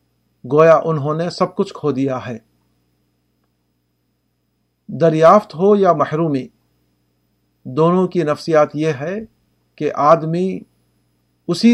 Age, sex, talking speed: 50-69, male, 100 wpm